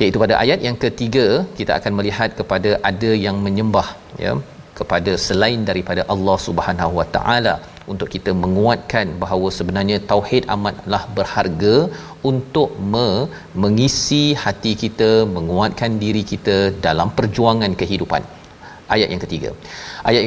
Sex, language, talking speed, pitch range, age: male, Malayalam, 125 wpm, 95-115 Hz, 40-59